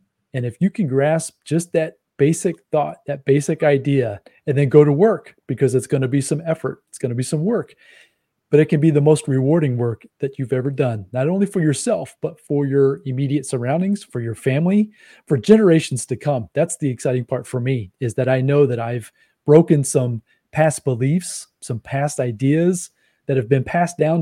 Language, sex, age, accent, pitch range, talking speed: English, male, 30-49, American, 130-160 Hz, 205 wpm